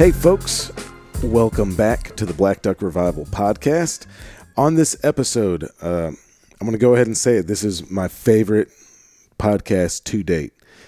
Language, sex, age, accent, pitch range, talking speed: English, male, 40-59, American, 80-105 Hz, 160 wpm